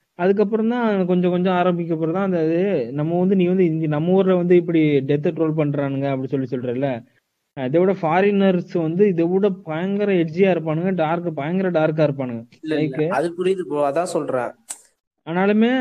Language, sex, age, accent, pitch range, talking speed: Tamil, male, 20-39, native, 150-190 Hz, 120 wpm